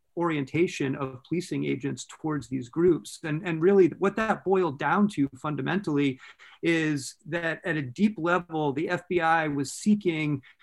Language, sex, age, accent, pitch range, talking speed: English, male, 40-59, American, 145-180 Hz, 145 wpm